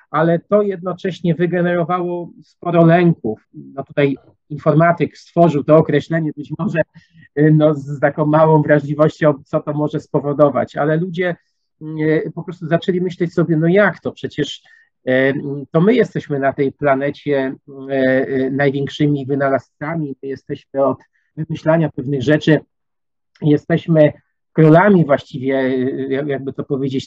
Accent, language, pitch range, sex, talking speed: native, Polish, 140-160 Hz, male, 115 wpm